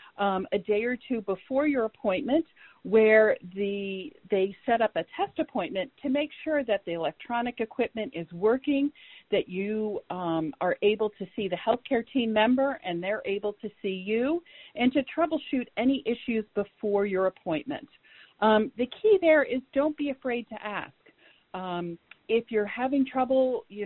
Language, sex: English, female